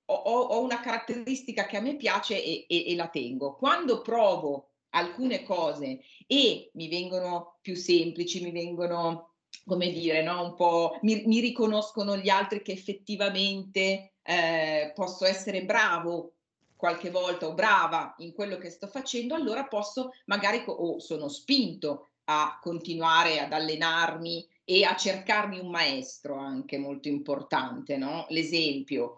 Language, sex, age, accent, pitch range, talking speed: Italian, female, 40-59, native, 160-200 Hz, 140 wpm